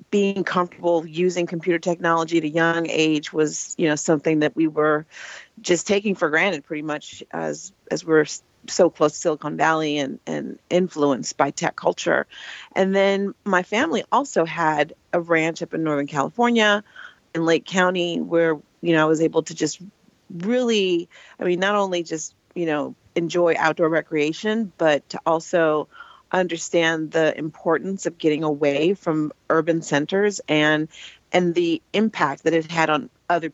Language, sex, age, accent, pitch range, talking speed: English, female, 40-59, American, 155-180 Hz, 165 wpm